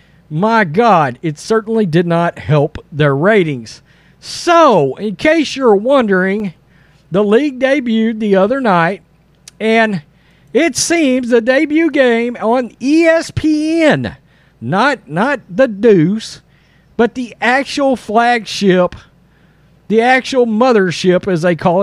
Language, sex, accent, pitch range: English, male, American, 170-265 Hz